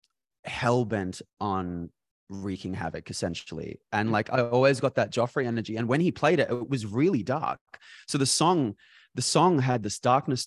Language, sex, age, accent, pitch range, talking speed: English, male, 20-39, Australian, 95-120 Hz, 170 wpm